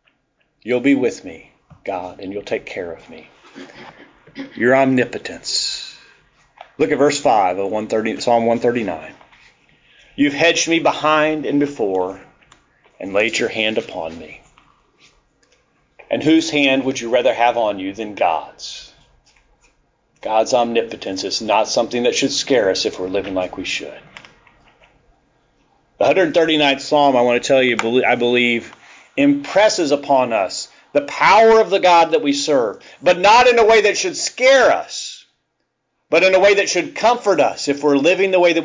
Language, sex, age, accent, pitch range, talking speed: English, male, 40-59, American, 125-195 Hz, 160 wpm